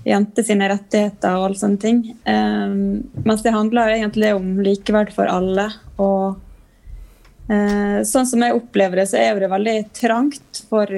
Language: English